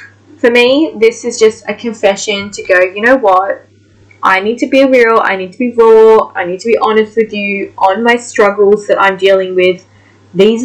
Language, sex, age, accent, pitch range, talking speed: English, female, 10-29, Australian, 185-255 Hz, 210 wpm